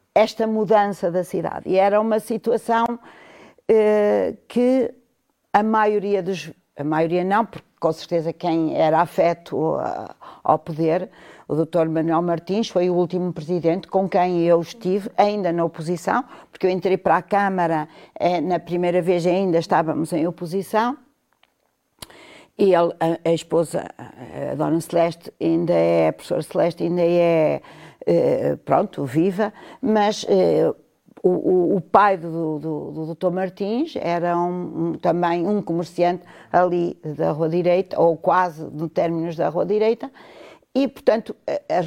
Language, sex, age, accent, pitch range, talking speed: Portuguese, female, 50-69, Brazilian, 170-210 Hz, 140 wpm